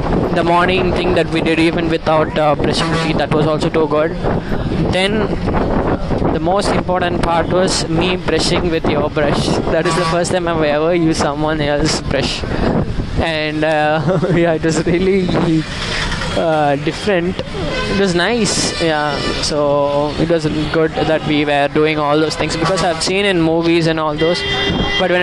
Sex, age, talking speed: male, 20-39, 175 wpm